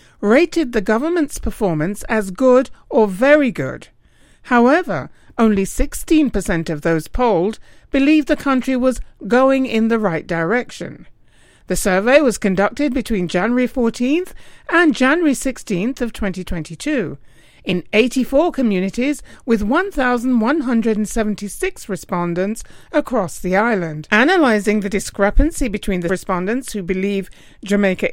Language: English